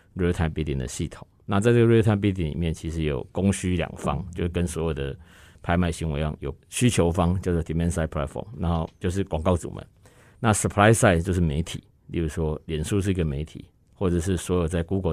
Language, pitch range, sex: Chinese, 80-100 Hz, male